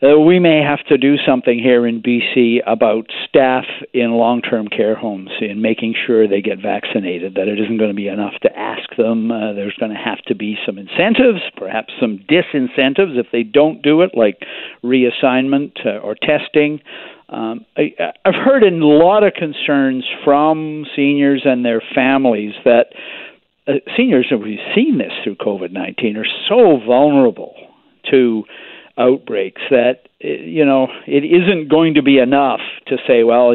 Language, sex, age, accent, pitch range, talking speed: English, male, 50-69, American, 115-150 Hz, 170 wpm